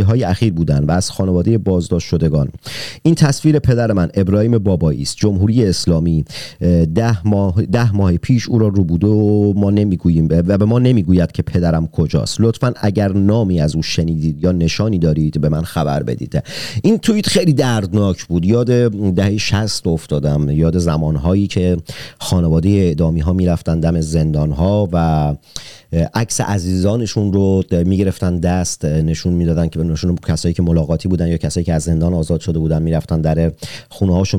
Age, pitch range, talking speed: 40-59, 85-100 Hz, 160 wpm